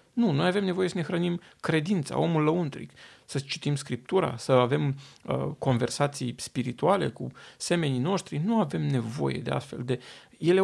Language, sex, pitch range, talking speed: Romanian, male, 130-185 Hz, 160 wpm